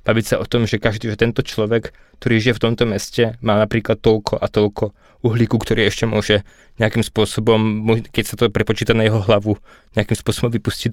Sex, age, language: male, 20-39, Slovak